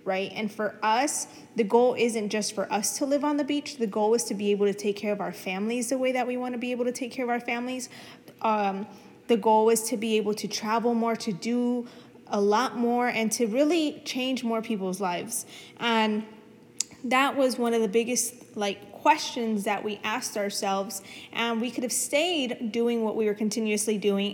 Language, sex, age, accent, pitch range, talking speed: English, female, 20-39, American, 210-250 Hz, 215 wpm